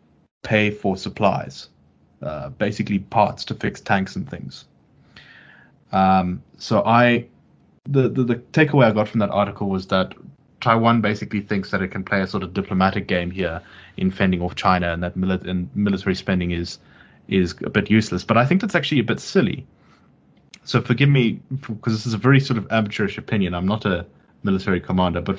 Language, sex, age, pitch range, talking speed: English, male, 20-39, 95-110 Hz, 190 wpm